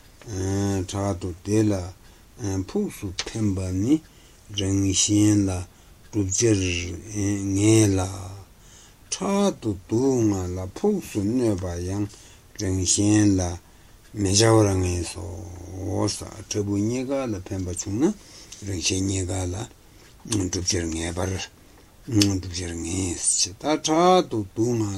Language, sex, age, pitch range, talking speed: Italian, male, 60-79, 95-110 Hz, 45 wpm